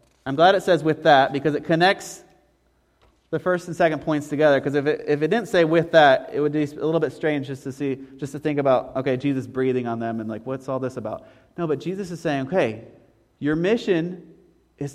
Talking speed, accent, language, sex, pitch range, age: 235 wpm, American, English, male, 120-180 Hz, 30-49